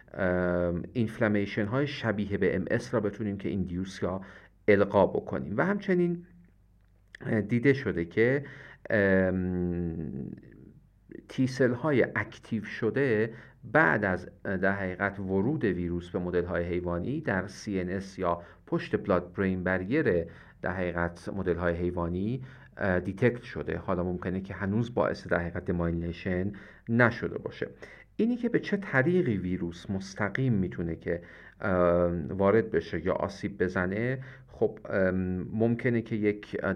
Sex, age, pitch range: male, 50-69, 90-115 Hz